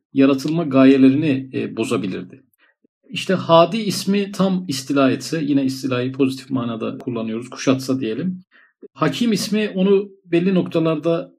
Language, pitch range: Turkish, 135-175 Hz